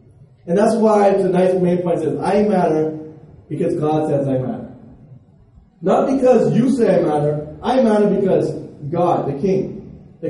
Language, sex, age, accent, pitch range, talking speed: English, male, 30-49, American, 170-245 Hz, 155 wpm